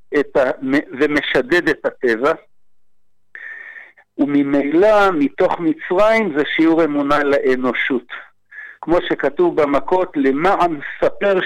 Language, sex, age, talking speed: Hebrew, male, 60-79, 90 wpm